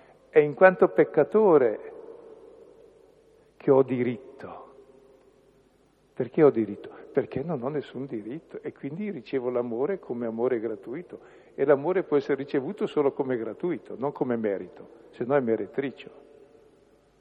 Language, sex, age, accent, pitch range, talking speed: Italian, male, 50-69, native, 120-175 Hz, 130 wpm